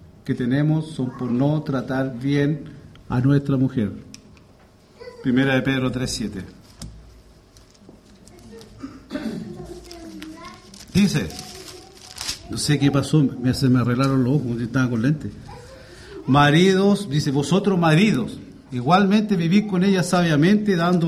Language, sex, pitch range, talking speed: English, male, 130-175 Hz, 110 wpm